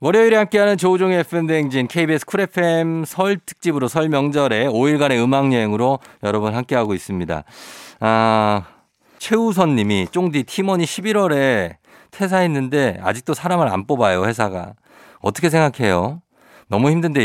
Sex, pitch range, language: male, 105-165 Hz, Korean